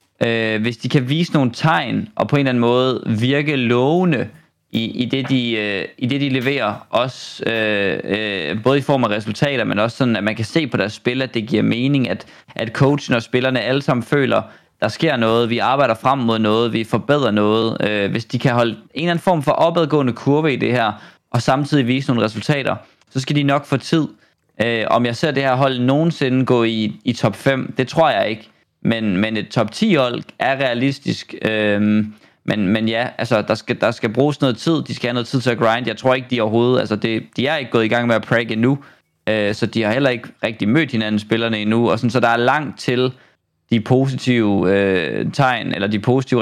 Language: Danish